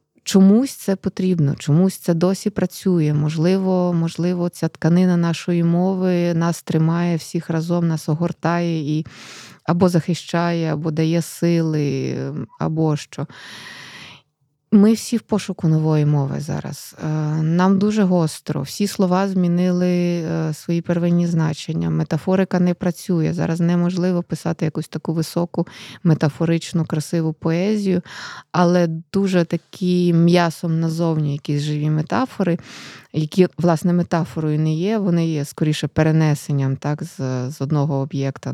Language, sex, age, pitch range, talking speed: Ukrainian, female, 20-39, 150-175 Hz, 120 wpm